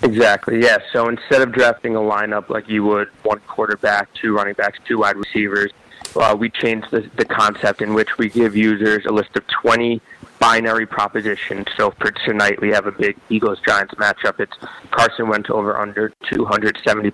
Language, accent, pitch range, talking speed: English, American, 100-115 Hz, 180 wpm